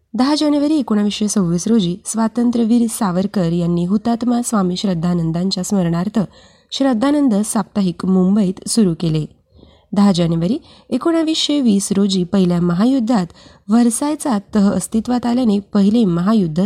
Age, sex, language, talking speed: 20-39, female, Marathi, 105 wpm